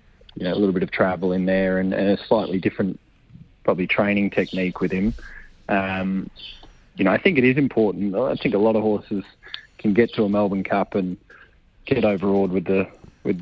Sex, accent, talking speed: male, Australian, 200 wpm